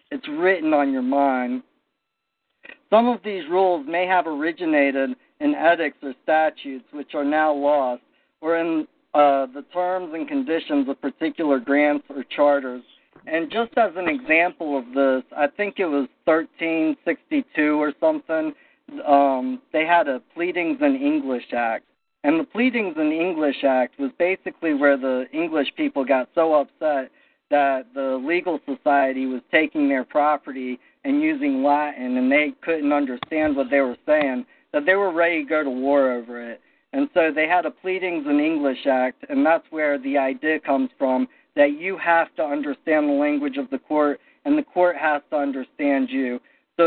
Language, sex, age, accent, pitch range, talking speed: English, male, 50-69, American, 140-210 Hz, 170 wpm